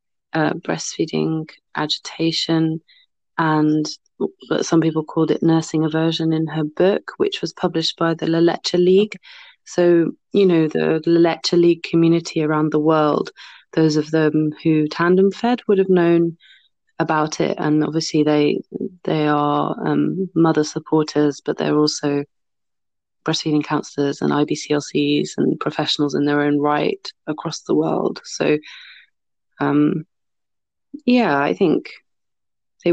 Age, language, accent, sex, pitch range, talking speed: 30-49, English, British, female, 145-170 Hz, 135 wpm